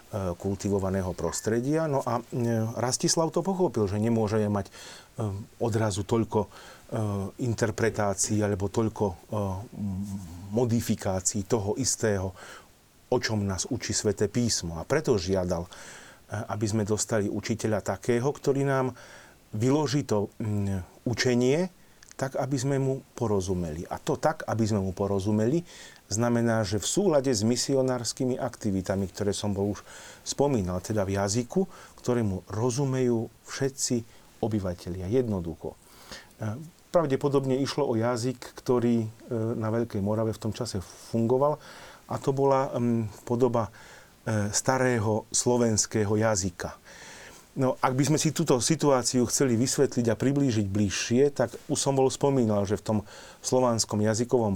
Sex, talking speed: male, 120 wpm